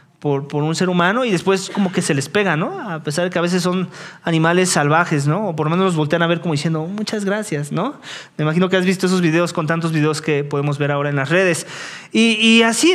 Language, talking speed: English, 260 wpm